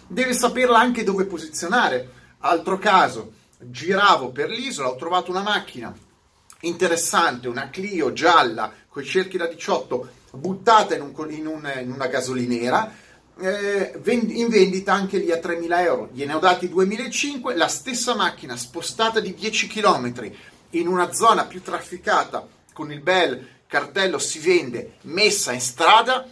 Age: 40-59